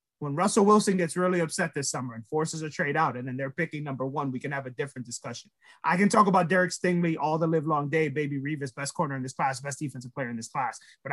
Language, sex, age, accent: English, male, 30-49, American